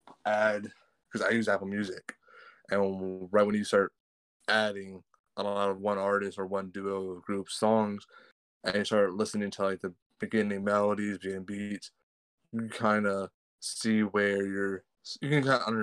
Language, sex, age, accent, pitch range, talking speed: English, male, 20-39, American, 95-110 Hz, 160 wpm